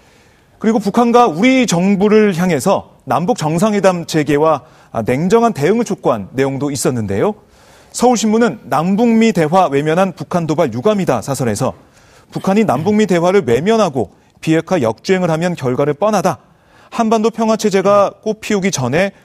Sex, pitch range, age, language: male, 145-205 Hz, 30-49, Korean